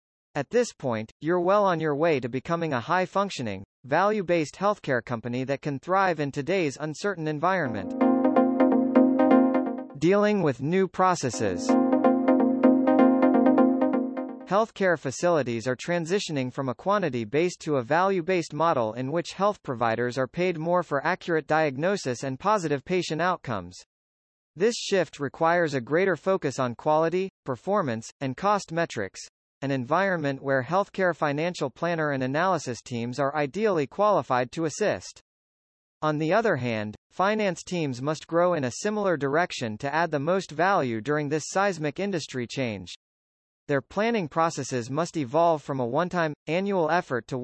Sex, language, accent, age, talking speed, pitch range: male, English, American, 40-59, 140 wpm, 135-190 Hz